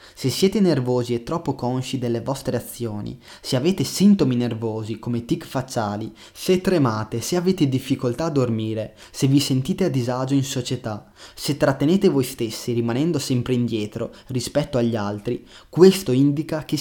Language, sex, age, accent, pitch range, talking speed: Italian, male, 20-39, native, 115-150 Hz, 155 wpm